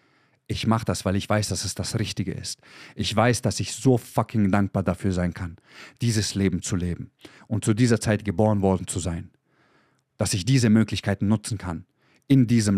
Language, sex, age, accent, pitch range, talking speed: German, male, 30-49, German, 100-130 Hz, 195 wpm